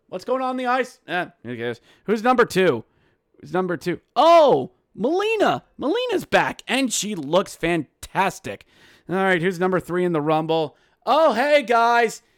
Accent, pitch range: American, 155-230 Hz